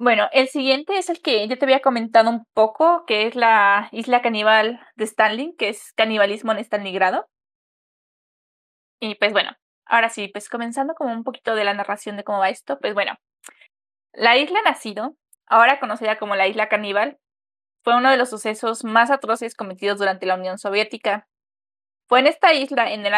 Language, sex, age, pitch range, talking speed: Spanish, female, 20-39, 205-260 Hz, 180 wpm